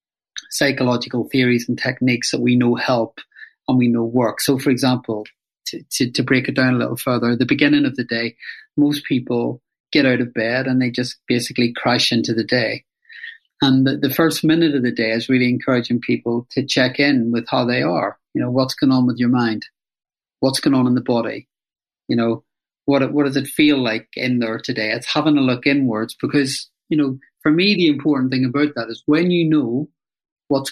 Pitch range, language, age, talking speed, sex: 120-145 Hz, English, 40-59, 210 wpm, male